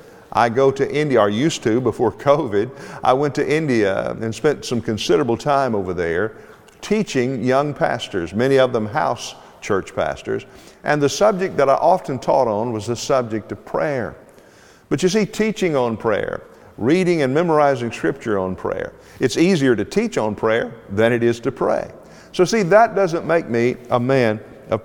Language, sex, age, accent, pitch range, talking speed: English, male, 50-69, American, 115-160 Hz, 180 wpm